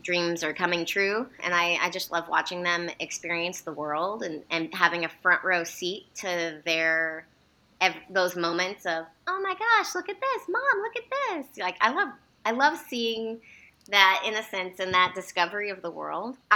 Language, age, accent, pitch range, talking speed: English, 20-39, American, 170-200 Hz, 185 wpm